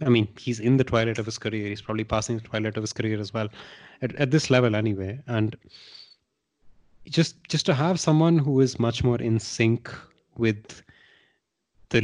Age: 30-49